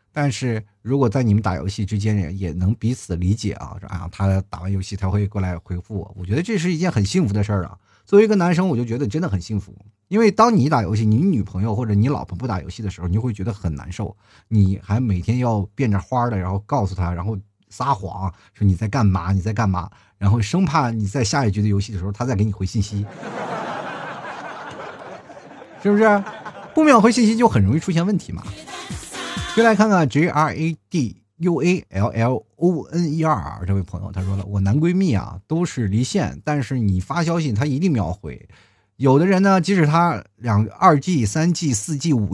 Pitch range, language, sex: 100-150 Hz, Chinese, male